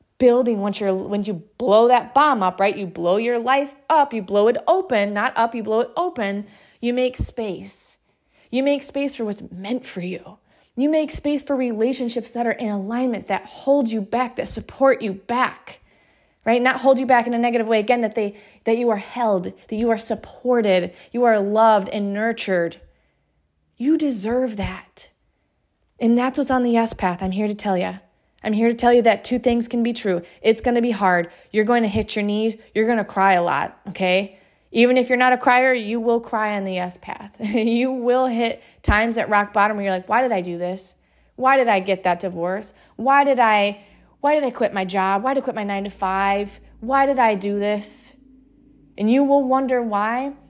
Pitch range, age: 200-250 Hz, 20-39